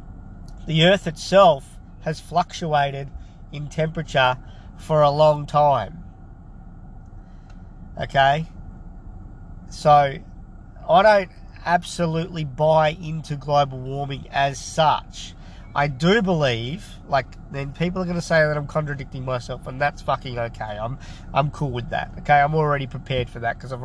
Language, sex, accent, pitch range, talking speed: English, male, Australian, 115-150 Hz, 135 wpm